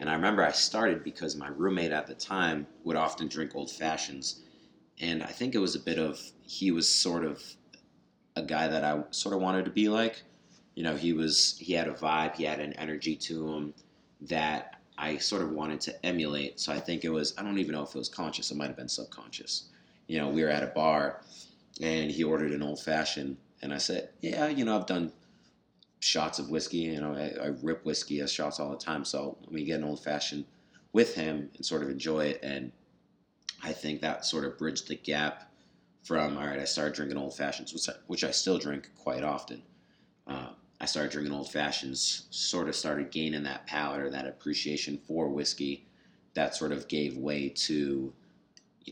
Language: English